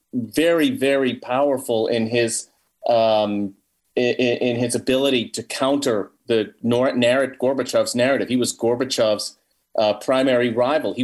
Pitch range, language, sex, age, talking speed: 120-170 Hz, English, male, 40-59, 130 wpm